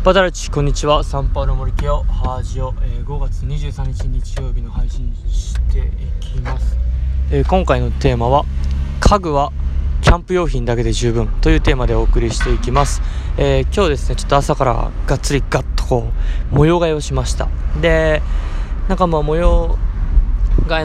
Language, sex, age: Japanese, male, 20-39